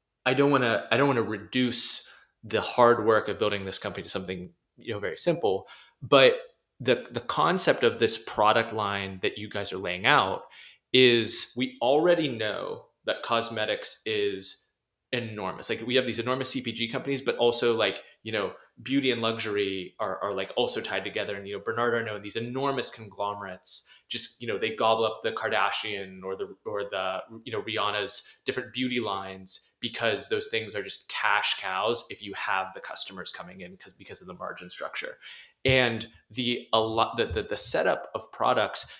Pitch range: 105-135 Hz